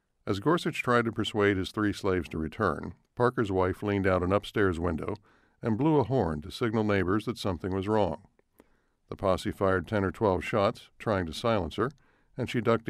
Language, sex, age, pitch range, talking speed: Italian, male, 60-79, 95-110 Hz, 195 wpm